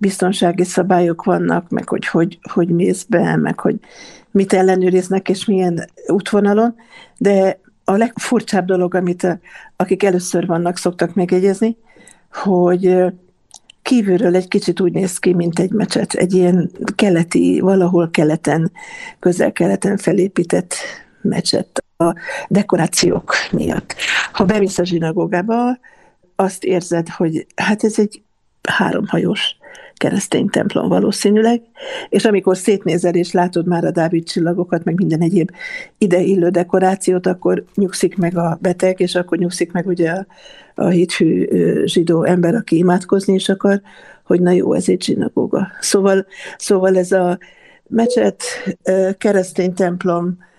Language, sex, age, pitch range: Hungarian, female, 60-79, 175-200 Hz